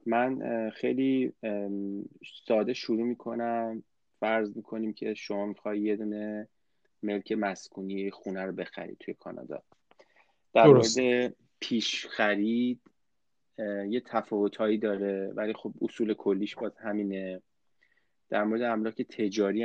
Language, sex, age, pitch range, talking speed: Persian, male, 30-49, 100-120 Hz, 110 wpm